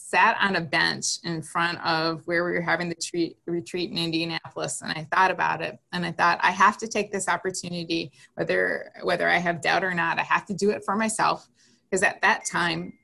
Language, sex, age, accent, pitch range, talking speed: English, female, 20-39, American, 165-190 Hz, 225 wpm